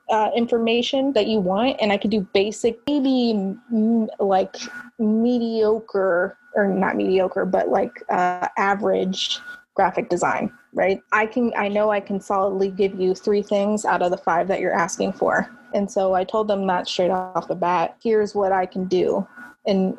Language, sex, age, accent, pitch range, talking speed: English, female, 20-39, American, 190-220 Hz, 175 wpm